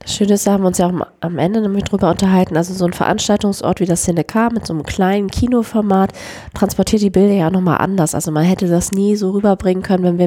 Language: German